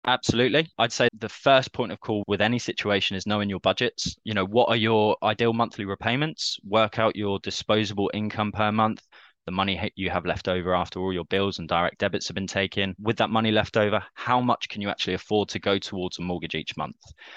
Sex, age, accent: male, 20-39, British